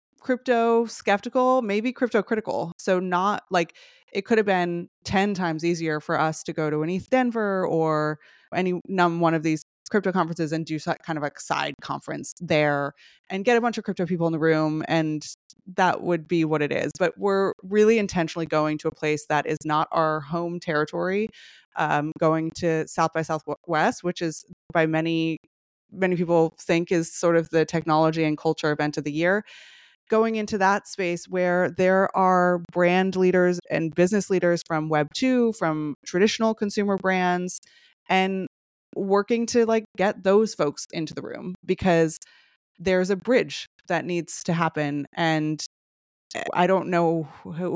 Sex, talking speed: female, 170 wpm